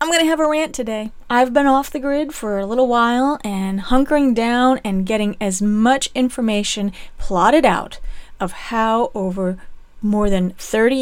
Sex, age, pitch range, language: female, 40-59, 195-260 Hz, English